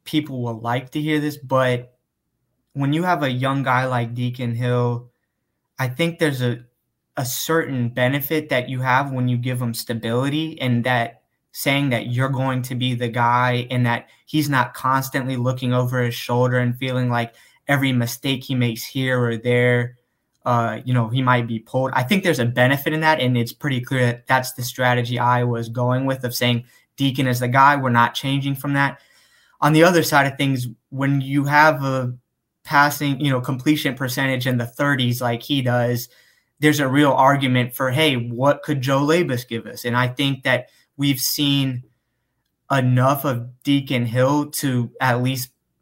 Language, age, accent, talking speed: English, 20-39, American, 185 wpm